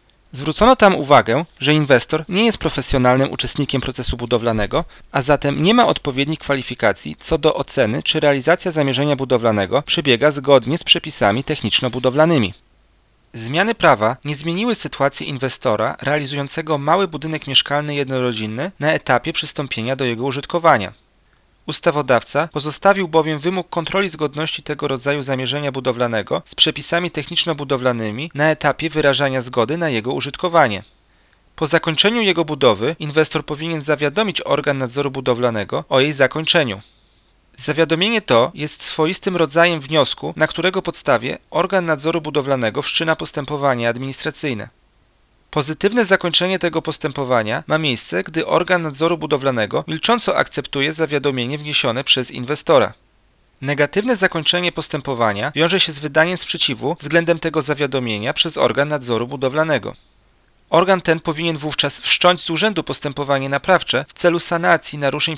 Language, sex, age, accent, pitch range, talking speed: Polish, male, 30-49, native, 135-165 Hz, 125 wpm